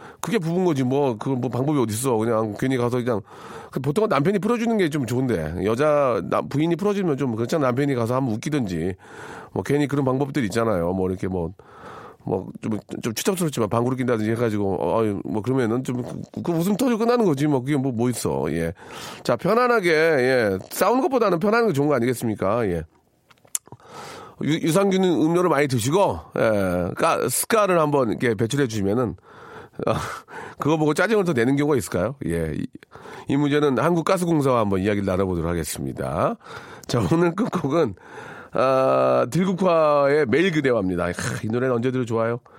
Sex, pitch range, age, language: male, 105-165 Hz, 40-59, Korean